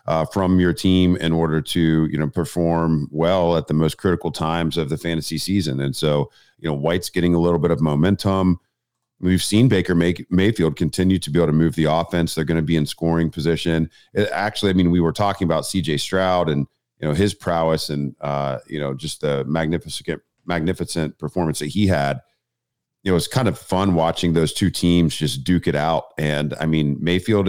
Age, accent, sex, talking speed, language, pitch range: 40-59, American, male, 205 wpm, English, 80-90 Hz